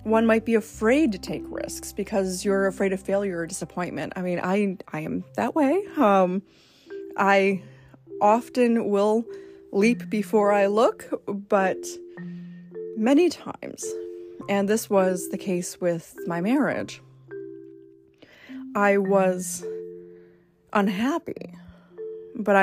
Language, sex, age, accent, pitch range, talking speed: English, female, 20-39, American, 175-230 Hz, 115 wpm